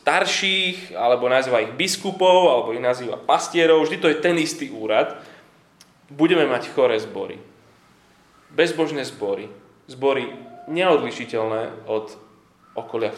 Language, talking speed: Slovak, 115 wpm